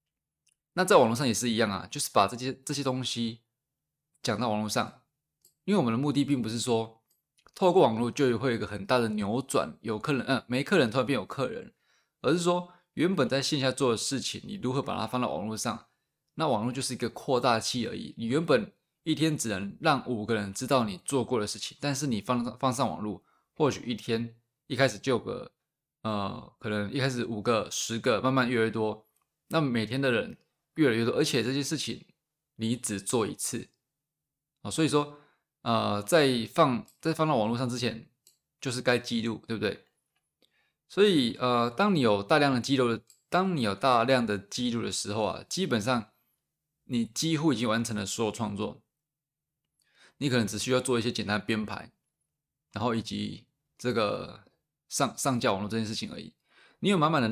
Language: Chinese